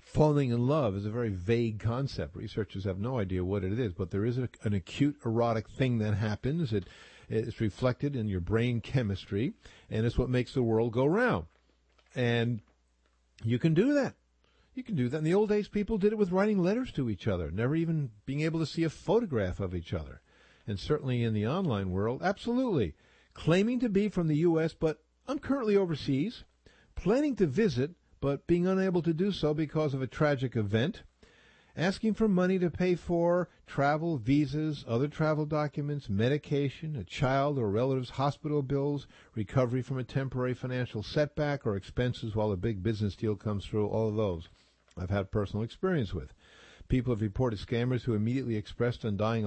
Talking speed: 185 wpm